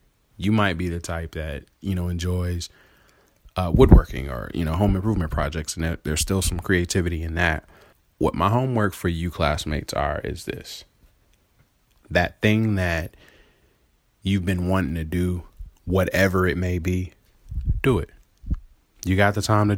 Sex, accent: male, American